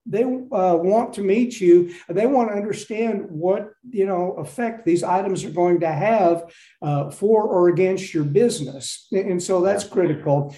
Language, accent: English, American